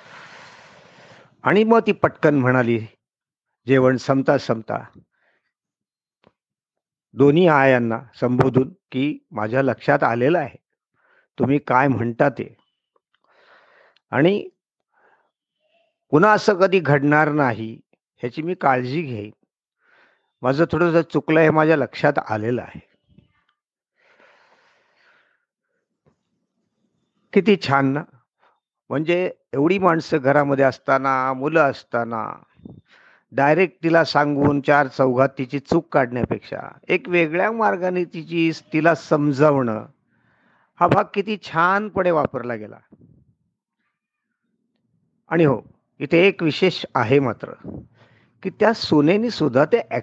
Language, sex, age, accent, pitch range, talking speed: Marathi, male, 50-69, native, 135-180 Hz, 75 wpm